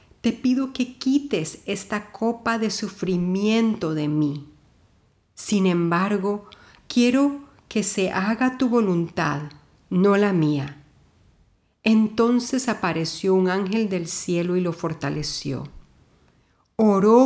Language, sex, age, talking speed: Spanish, female, 50-69, 110 wpm